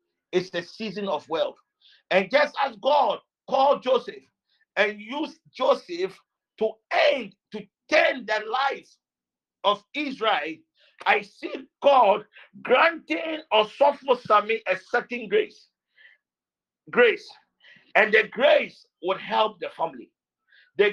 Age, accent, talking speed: 50-69, Nigerian, 115 wpm